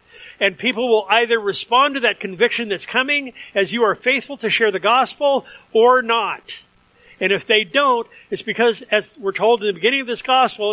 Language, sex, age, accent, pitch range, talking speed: English, male, 50-69, American, 190-235 Hz, 195 wpm